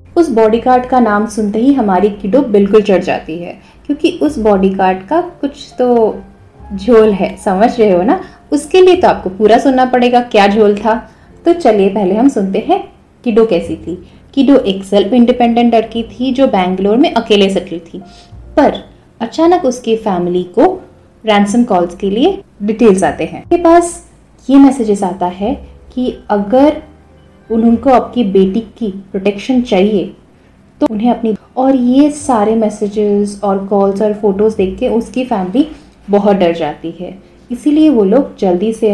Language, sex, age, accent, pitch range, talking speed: Hindi, female, 30-49, native, 200-255 Hz, 160 wpm